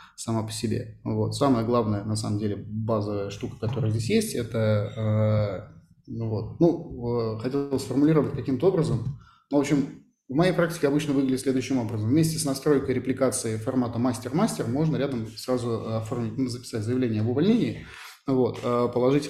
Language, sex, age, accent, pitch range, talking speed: Russian, male, 20-39, native, 110-135 Hz, 135 wpm